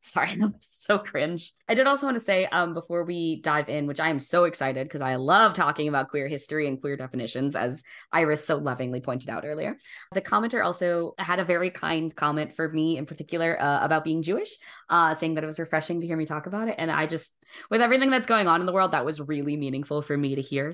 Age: 20-39